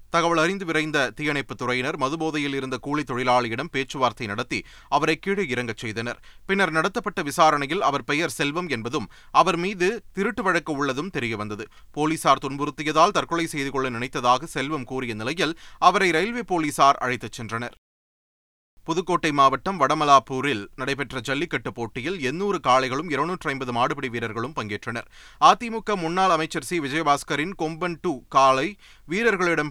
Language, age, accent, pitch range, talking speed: Tamil, 30-49, native, 130-175 Hz, 130 wpm